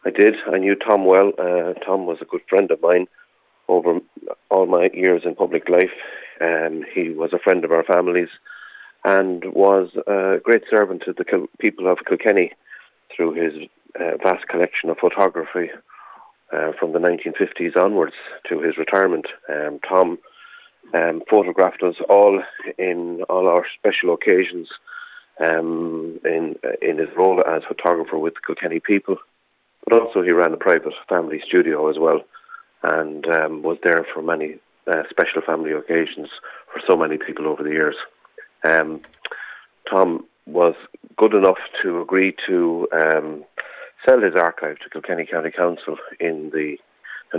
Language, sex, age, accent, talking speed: English, male, 30-49, Irish, 155 wpm